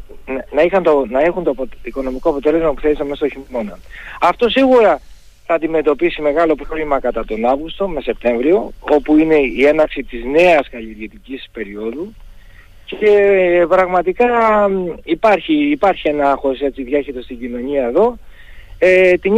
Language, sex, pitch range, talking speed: Greek, male, 125-175 Hz, 135 wpm